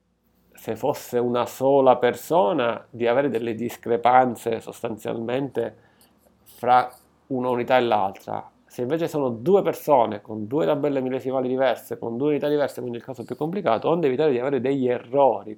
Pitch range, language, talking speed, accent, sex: 115-150 Hz, Italian, 155 wpm, native, male